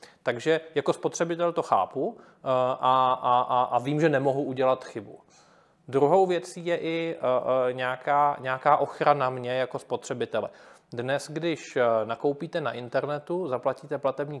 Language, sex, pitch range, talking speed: Czech, male, 130-170 Hz, 120 wpm